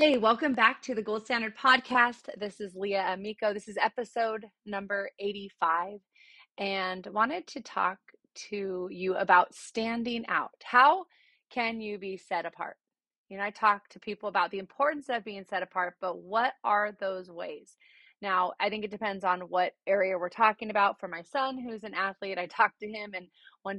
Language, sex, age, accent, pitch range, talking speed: English, female, 30-49, American, 180-220 Hz, 185 wpm